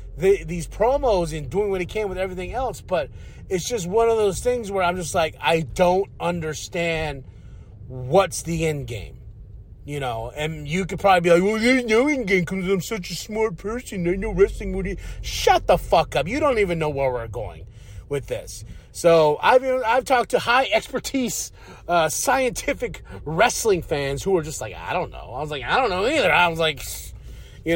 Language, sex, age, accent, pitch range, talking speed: English, male, 30-49, American, 135-210 Hz, 205 wpm